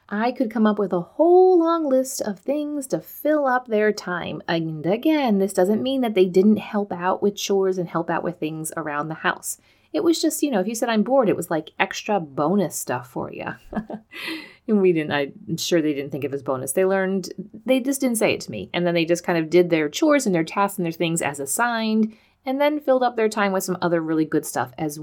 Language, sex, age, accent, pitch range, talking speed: English, female, 30-49, American, 170-240 Hz, 250 wpm